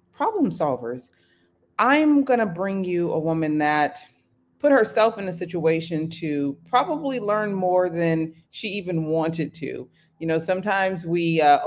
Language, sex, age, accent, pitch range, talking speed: English, female, 30-49, American, 140-175 Hz, 150 wpm